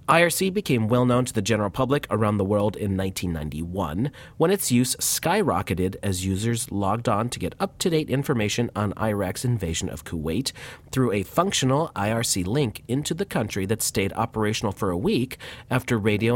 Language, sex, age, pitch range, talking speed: English, male, 30-49, 100-135 Hz, 165 wpm